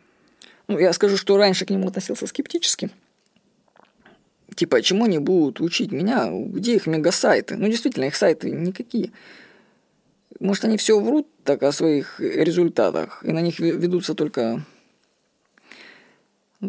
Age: 20-39